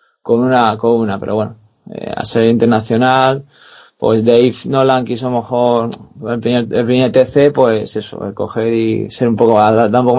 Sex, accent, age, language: male, Spanish, 20-39, Spanish